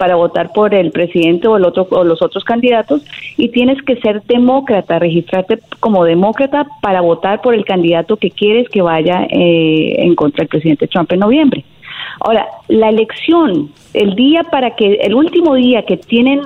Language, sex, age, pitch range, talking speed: Spanish, female, 40-59, 180-245 Hz, 180 wpm